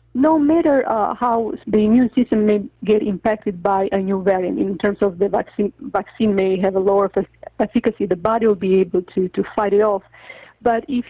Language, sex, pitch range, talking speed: English, female, 200-240 Hz, 200 wpm